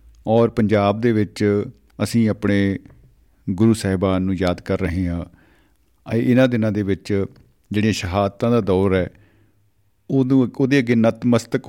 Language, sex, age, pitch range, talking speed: Punjabi, male, 50-69, 95-115 Hz, 140 wpm